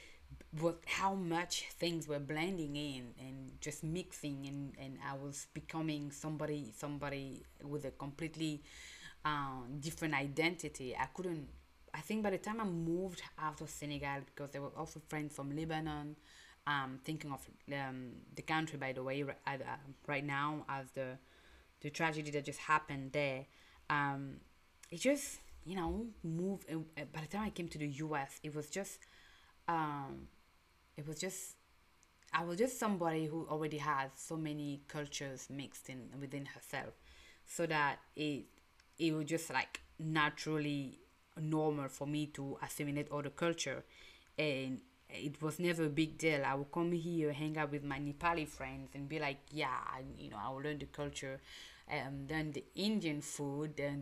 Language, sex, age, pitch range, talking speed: English, female, 30-49, 140-160 Hz, 160 wpm